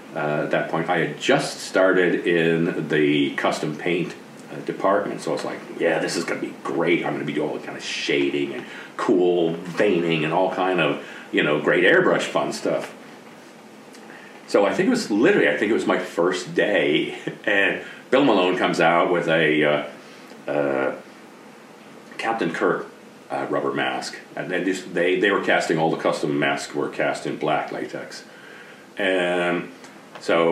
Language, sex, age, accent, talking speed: English, male, 40-59, American, 175 wpm